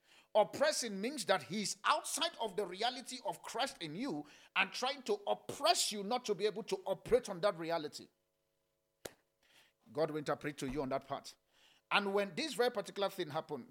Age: 50-69